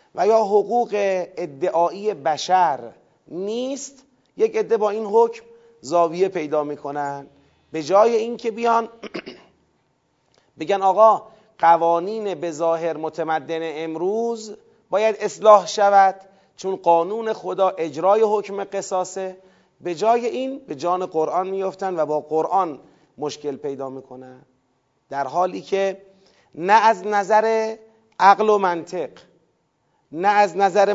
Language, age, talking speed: Persian, 30-49, 115 wpm